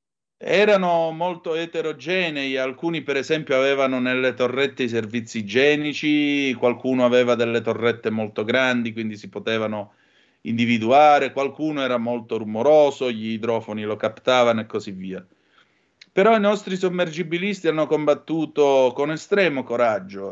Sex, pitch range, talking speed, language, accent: male, 110-145 Hz, 125 wpm, Italian, native